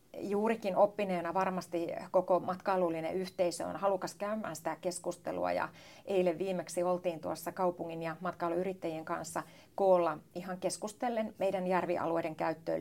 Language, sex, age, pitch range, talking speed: Finnish, female, 30-49, 165-190 Hz, 120 wpm